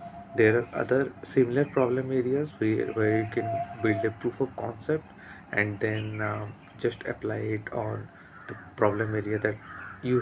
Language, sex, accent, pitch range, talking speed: English, male, Indian, 110-130 Hz, 160 wpm